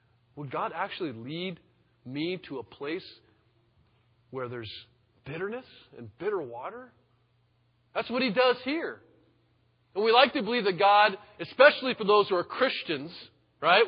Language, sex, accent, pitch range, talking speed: English, male, American, 120-200 Hz, 145 wpm